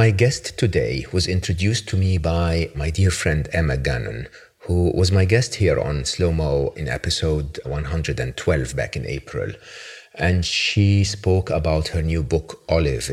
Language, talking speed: English, 155 wpm